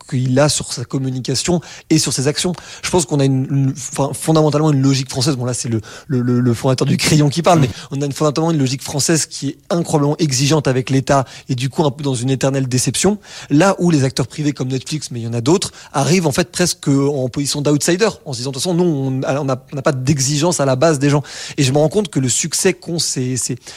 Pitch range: 135-165 Hz